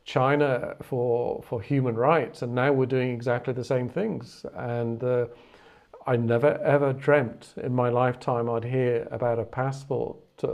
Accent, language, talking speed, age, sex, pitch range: British, English, 160 wpm, 40-59, male, 125-150 Hz